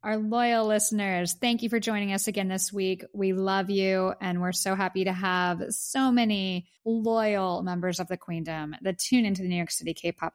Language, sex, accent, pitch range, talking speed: English, female, American, 170-215 Hz, 205 wpm